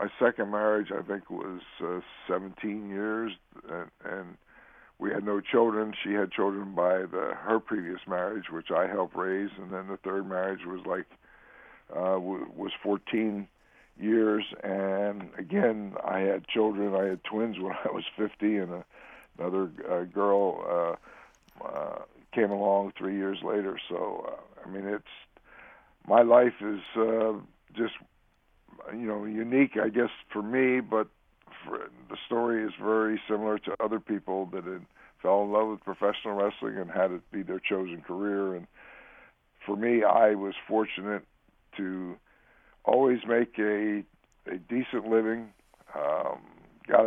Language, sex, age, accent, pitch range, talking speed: English, male, 60-79, American, 95-110 Hz, 145 wpm